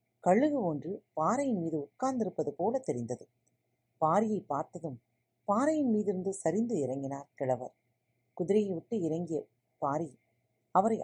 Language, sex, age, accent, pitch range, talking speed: Tamil, female, 40-59, native, 135-225 Hz, 105 wpm